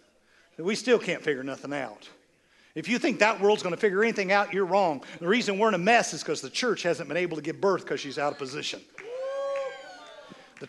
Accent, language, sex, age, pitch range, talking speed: American, English, male, 50-69, 175-255 Hz, 230 wpm